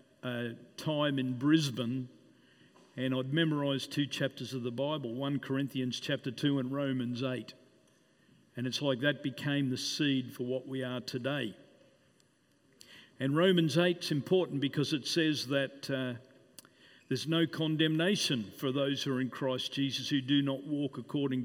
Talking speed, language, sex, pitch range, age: 155 wpm, English, male, 130-160 Hz, 50-69